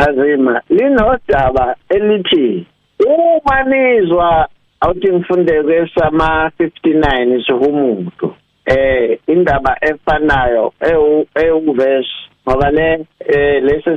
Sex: male